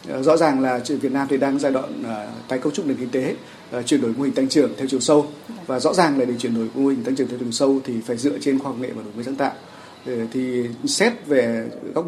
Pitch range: 125-155 Hz